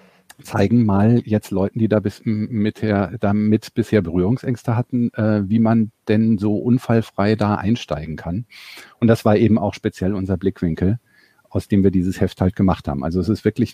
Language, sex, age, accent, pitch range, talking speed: German, male, 50-69, German, 100-120 Hz, 175 wpm